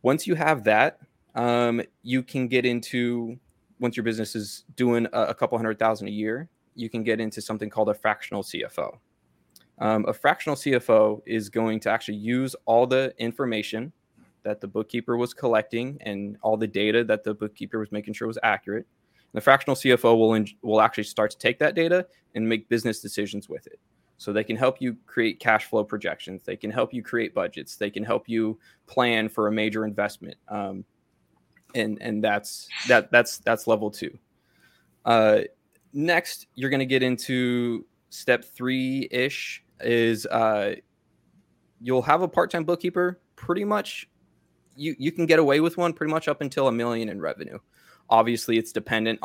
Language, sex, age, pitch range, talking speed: English, male, 20-39, 110-130 Hz, 175 wpm